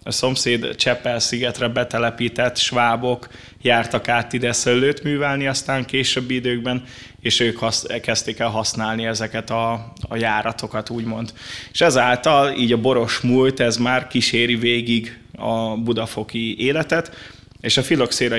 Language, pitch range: Hungarian, 115-125 Hz